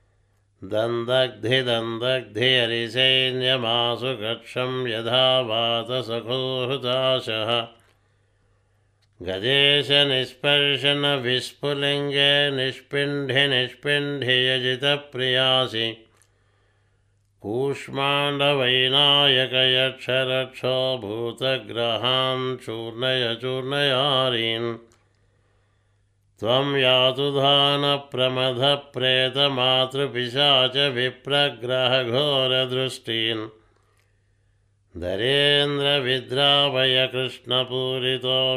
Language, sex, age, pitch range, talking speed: Telugu, male, 60-79, 115-135 Hz, 35 wpm